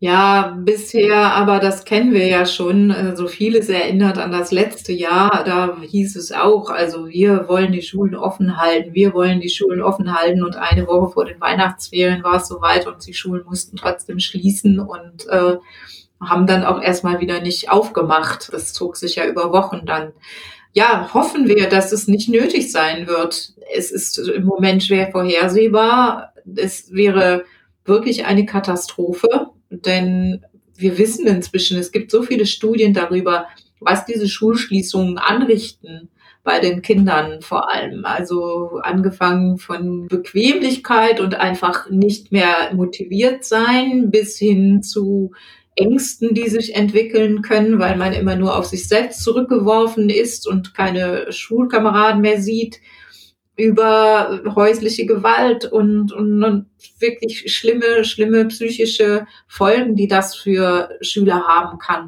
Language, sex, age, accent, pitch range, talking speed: German, female, 30-49, German, 180-215 Hz, 145 wpm